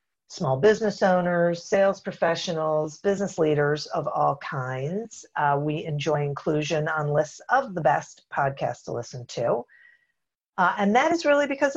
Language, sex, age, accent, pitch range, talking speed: English, female, 50-69, American, 160-215 Hz, 150 wpm